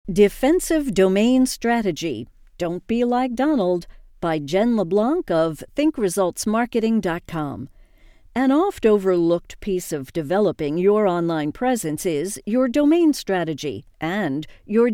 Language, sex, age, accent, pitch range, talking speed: English, female, 50-69, American, 170-235 Hz, 105 wpm